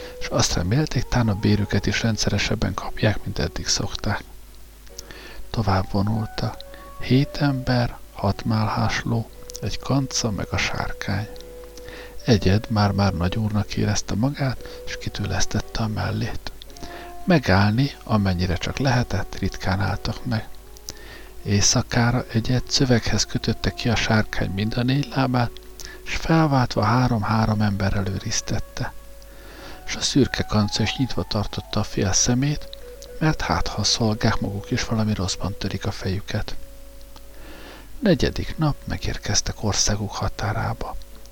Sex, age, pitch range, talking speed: male, 60-79, 100-125 Hz, 120 wpm